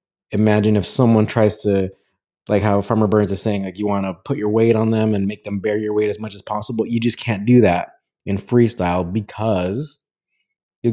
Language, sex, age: English, male, 30-49